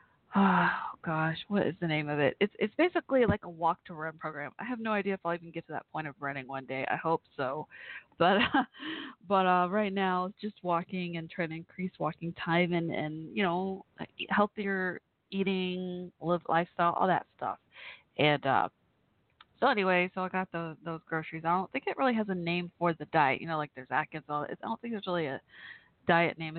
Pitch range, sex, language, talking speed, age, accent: 160-200 Hz, female, English, 215 wpm, 20-39, American